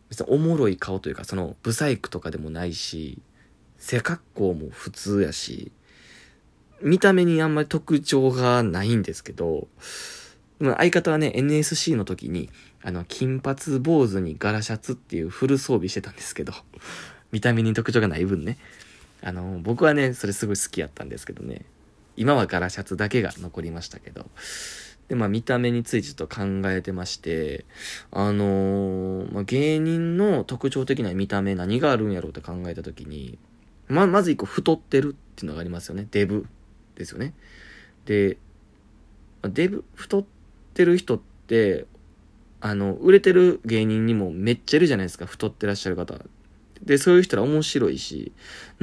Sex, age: male, 20-39